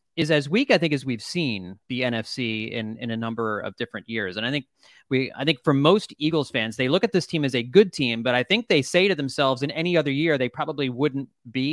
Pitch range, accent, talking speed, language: 130-195 Hz, American, 260 wpm, English